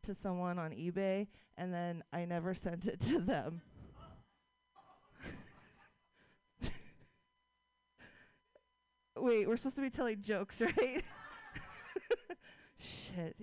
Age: 20-39